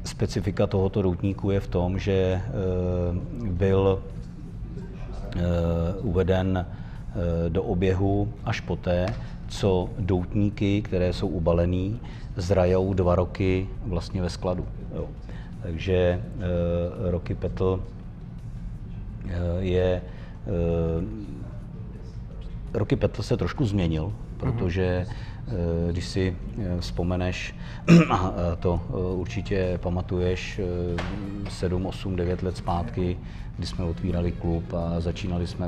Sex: male